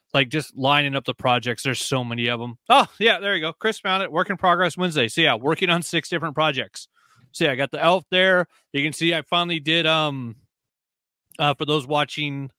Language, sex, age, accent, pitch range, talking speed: English, male, 30-49, American, 135-165 Hz, 235 wpm